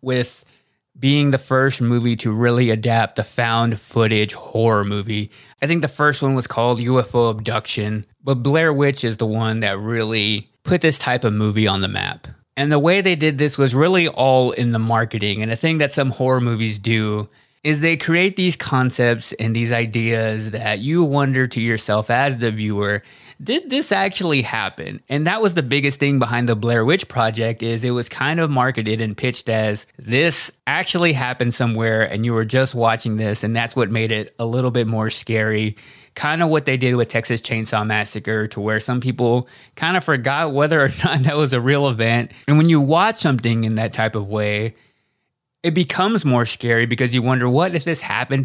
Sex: male